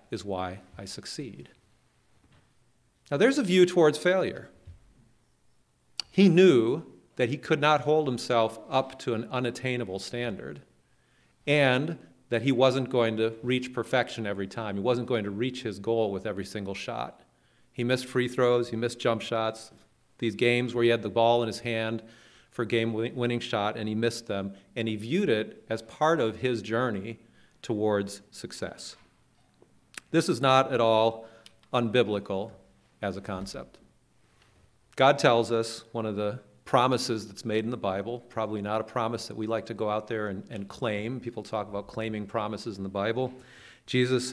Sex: male